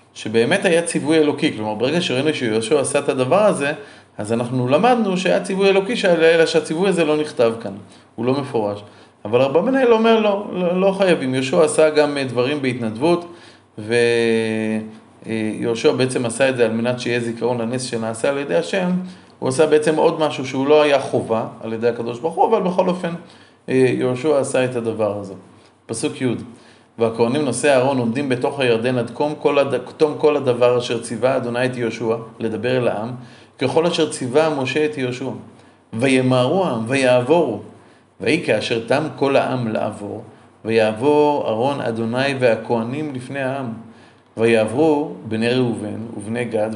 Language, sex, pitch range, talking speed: Hebrew, male, 115-150 Hz, 155 wpm